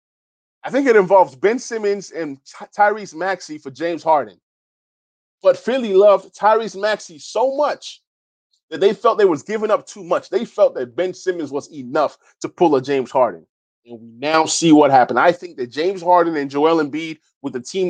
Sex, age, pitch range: male, 20-39, 145-215 Hz